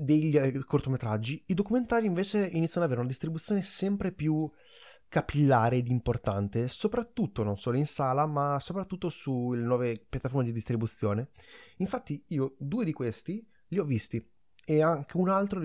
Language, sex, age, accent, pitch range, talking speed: Italian, male, 20-39, native, 115-150 Hz, 155 wpm